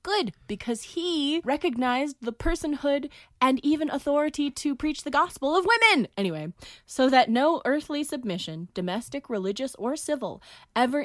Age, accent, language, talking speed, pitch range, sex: 20-39, American, English, 140 wpm, 185-250 Hz, female